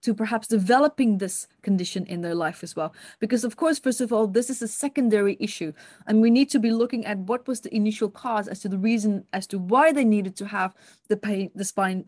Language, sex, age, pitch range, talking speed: English, female, 30-49, 205-255 Hz, 240 wpm